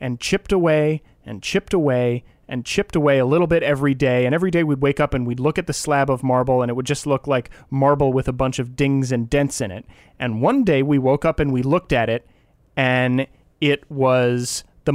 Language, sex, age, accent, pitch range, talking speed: English, male, 30-49, American, 130-170 Hz, 235 wpm